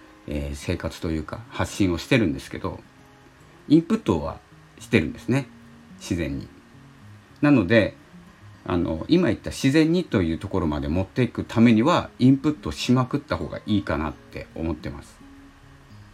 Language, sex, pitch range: Japanese, male, 80-130 Hz